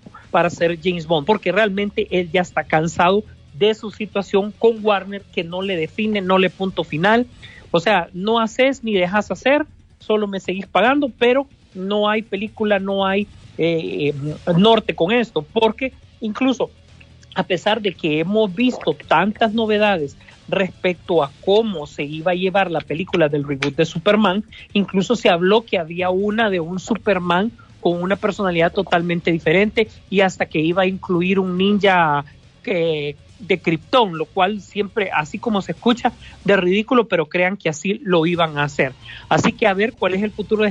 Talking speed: 175 wpm